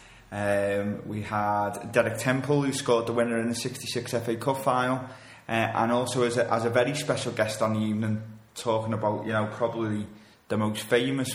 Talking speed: 190 wpm